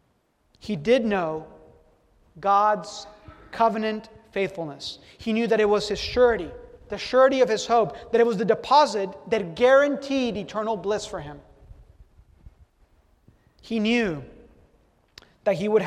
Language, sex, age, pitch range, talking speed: English, male, 30-49, 170-225 Hz, 130 wpm